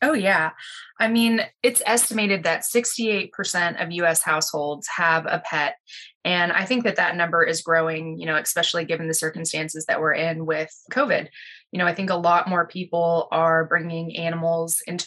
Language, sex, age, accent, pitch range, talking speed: English, female, 20-39, American, 165-195 Hz, 180 wpm